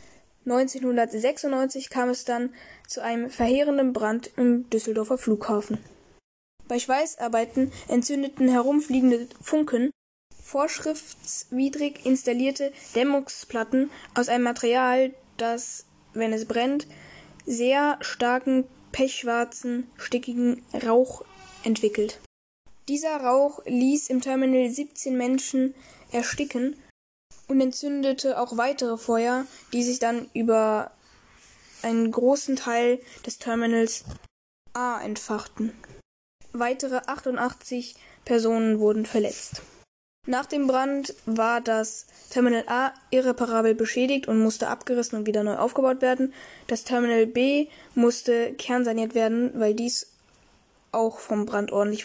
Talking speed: 105 wpm